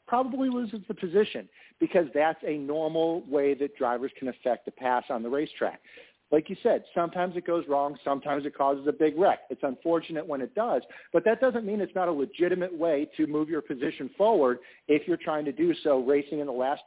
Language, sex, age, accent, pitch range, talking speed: English, male, 50-69, American, 140-175 Hz, 215 wpm